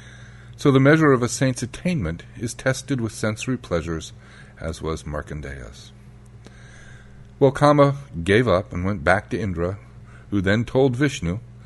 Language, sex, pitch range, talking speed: English, male, 90-120 Hz, 140 wpm